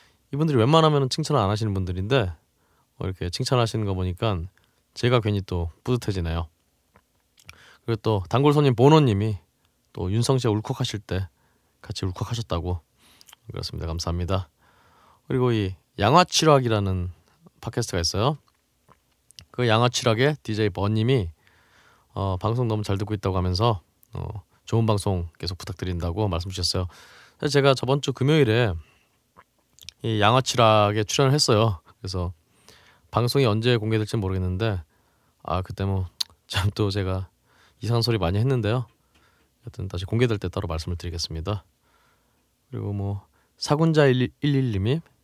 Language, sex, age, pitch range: Korean, male, 20-39, 90-125 Hz